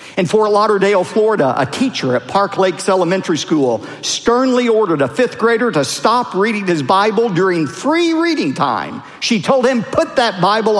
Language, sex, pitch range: English, male, 160-225 Hz